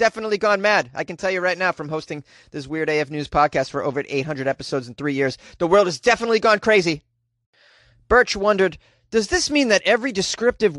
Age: 30-49